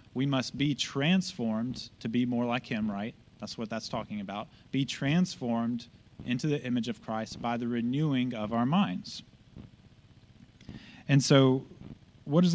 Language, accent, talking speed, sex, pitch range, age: English, American, 155 wpm, male, 115-140 Hz, 30-49